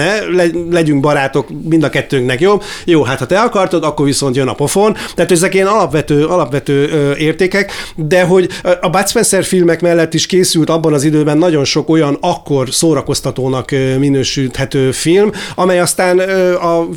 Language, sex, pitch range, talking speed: Hungarian, male, 140-180 Hz, 160 wpm